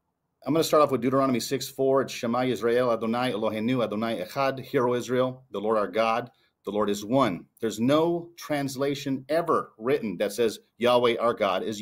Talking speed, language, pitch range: 190 wpm, English, 105-135 Hz